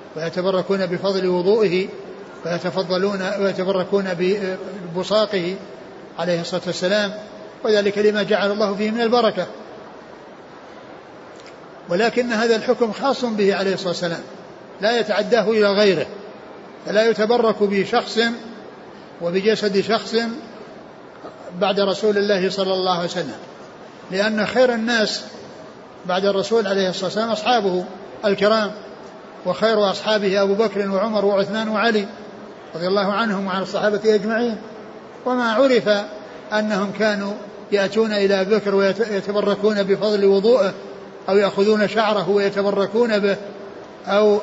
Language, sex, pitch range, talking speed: Arabic, male, 195-215 Hz, 105 wpm